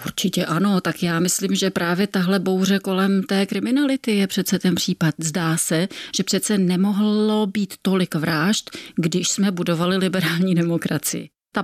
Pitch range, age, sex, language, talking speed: 165-190 Hz, 30-49, female, Czech, 155 wpm